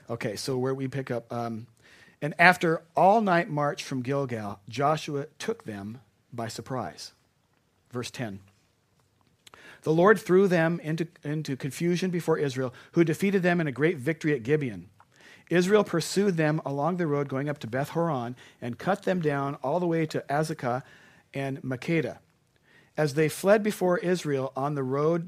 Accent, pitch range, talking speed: American, 120-165 Hz, 160 wpm